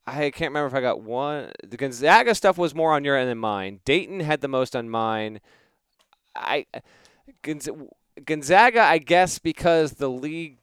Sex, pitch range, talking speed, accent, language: male, 115-145 Hz, 170 wpm, American, English